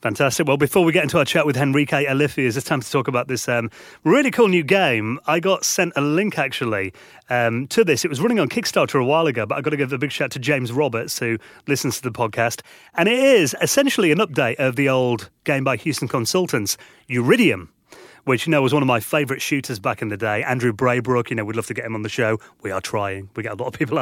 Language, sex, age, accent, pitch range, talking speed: English, male, 30-49, British, 120-150 Hz, 255 wpm